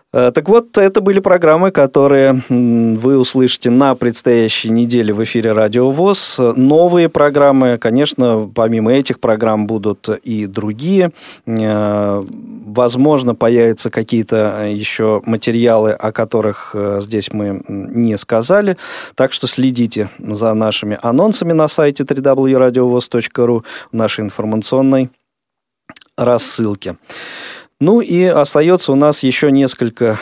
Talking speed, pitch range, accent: 110 wpm, 110-135 Hz, native